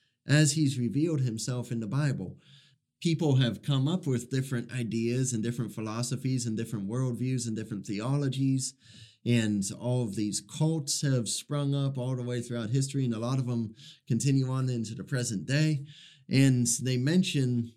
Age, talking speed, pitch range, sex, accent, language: 30-49, 170 wpm, 120-145 Hz, male, American, English